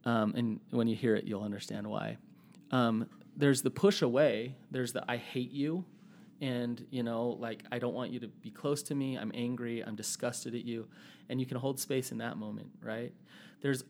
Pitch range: 115-140 Hz